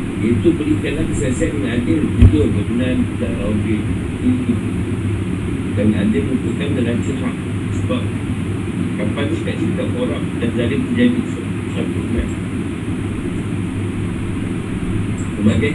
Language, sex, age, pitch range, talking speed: Malay, male, 50-69, 90-110 Hz, 90 wpm